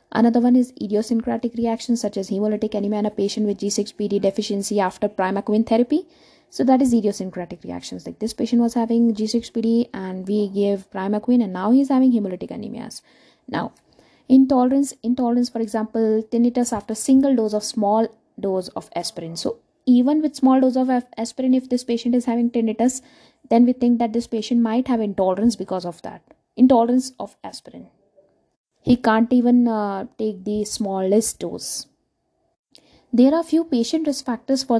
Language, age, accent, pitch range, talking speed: English, 20-39, Indian, 200-245 Hz, 165 wpm